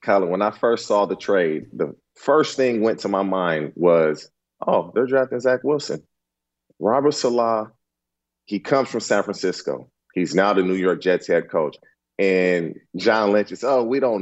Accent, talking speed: American, 175 wpm